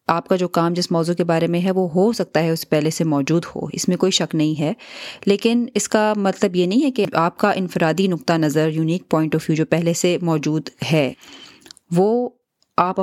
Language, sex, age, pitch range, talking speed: Urdu, female, 30-49, 160-205 Hz, 225 wpm